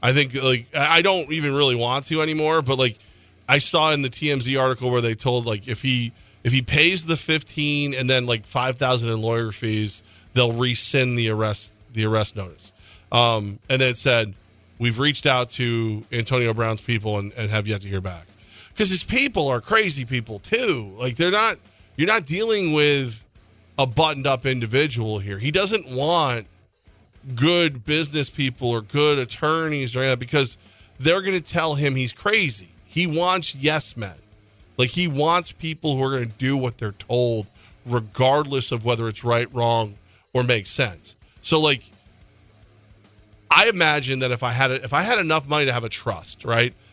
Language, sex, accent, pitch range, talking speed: English, male, American, 110-145 Hz, 185 wpm